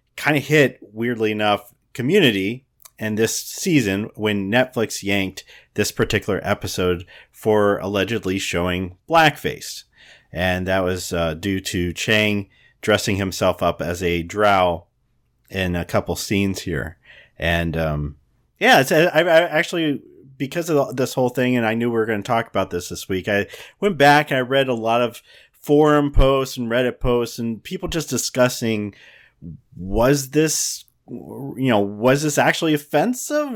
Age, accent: 40-59, American